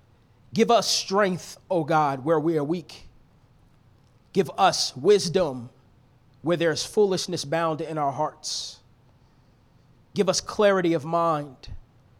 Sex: male